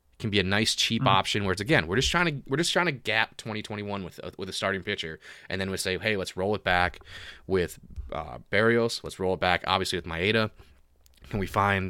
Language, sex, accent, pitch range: English, male, American, 90-110 Hz